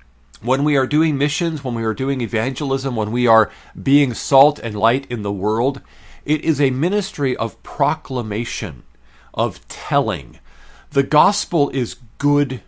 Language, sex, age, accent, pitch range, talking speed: English, male, 40-59, American, 105-145 Hz, 150 wpm